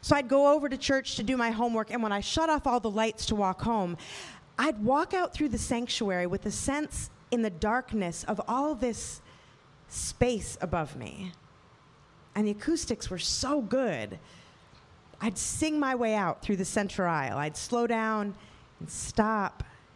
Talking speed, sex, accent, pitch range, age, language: 175 wpm, female, American, 190-260 Hz, 30-49, English